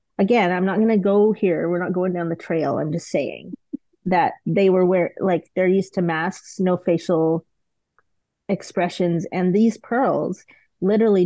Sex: female